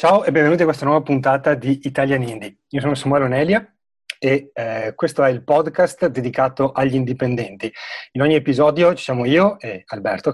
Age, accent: 30-49, native